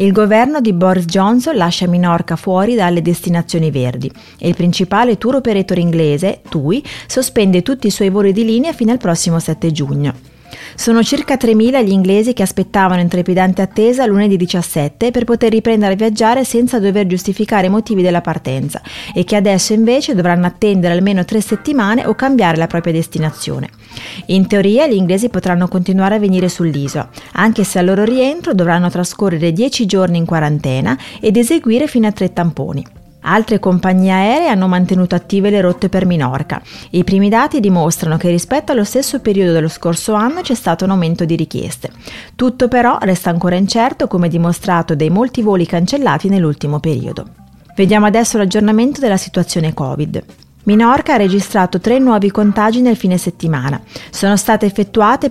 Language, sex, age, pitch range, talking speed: Italian, female, 30-49, 175-225 Hz, 165 wpm